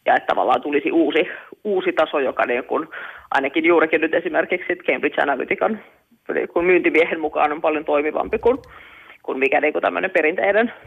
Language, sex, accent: Finnish, female, native